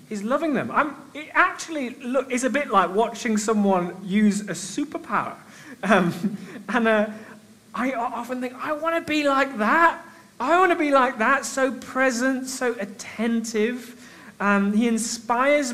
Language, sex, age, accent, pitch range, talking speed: English, male, 30-49, British, 165-240 Hz, 155 wpm